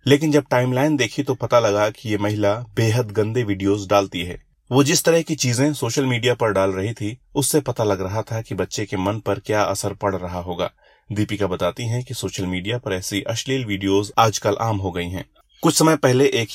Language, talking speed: Hindi, 220 wpm